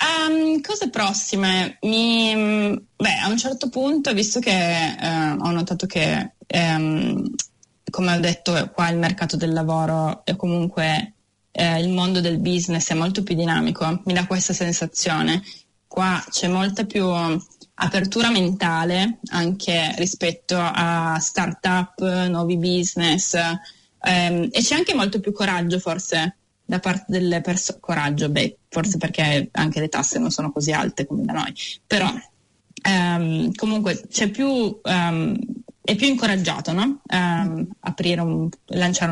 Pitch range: 170-205 Hz